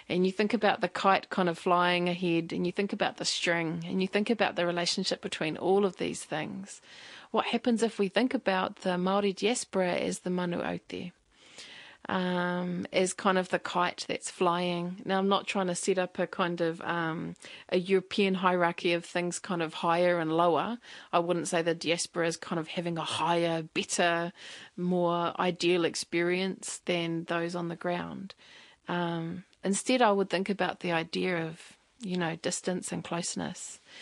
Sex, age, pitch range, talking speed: female, 30-49, 170-195 Hz, 180 wpm